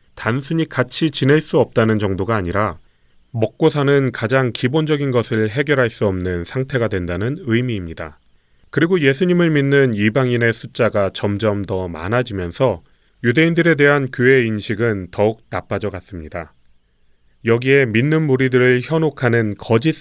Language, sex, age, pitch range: Korean, male, 30-49, 95-135 Hz